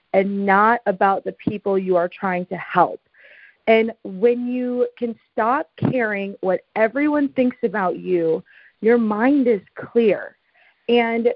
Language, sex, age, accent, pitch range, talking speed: English, female, 30-49, American, 185-240 Hz, 135 wpm